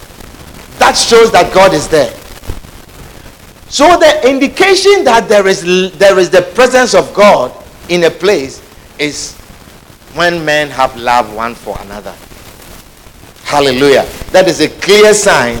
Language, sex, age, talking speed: English, male, 50-69, 130 wpm